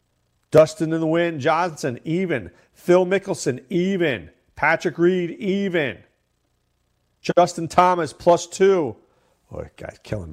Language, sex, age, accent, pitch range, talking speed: English, male, 40-59, American, 110-155 Hz, 115 wpm